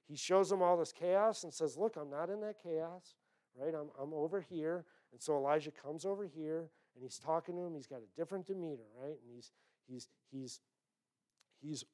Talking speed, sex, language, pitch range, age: 205 wpm, male, English, 130-175 Hz, 50-69